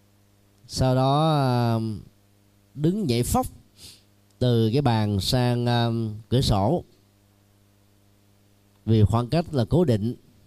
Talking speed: 95 wpm